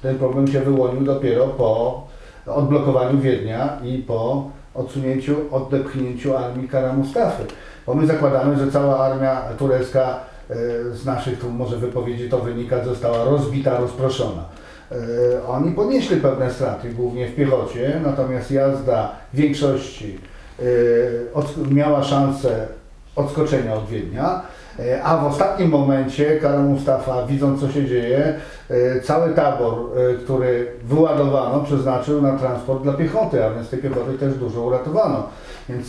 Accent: native